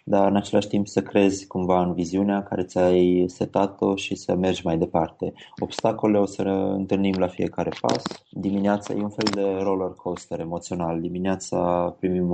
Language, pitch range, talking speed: Romanian, 90-100 Hz, 160 wpm